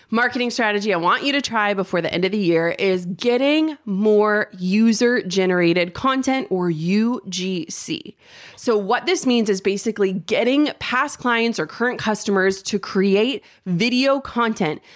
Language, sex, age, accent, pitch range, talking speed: English, female, 20-39, American, 190-240 Hz, 150 wpm